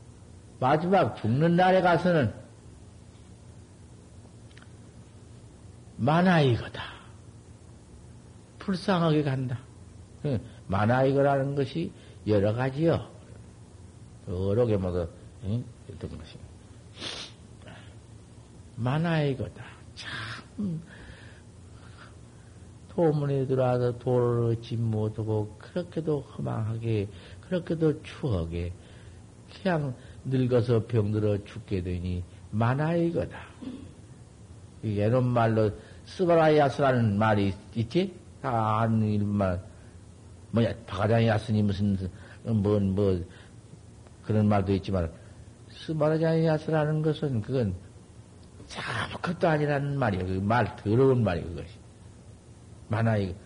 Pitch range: 100-135 Hz